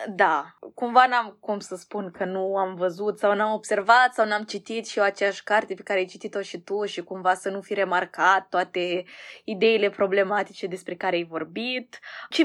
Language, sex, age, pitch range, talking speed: Romanian, female, 20-39, 195-255 Hz, 195 wpm